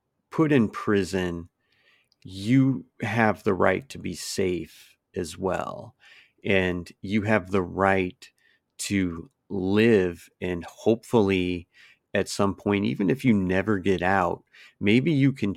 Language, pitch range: English, 90-110 Hz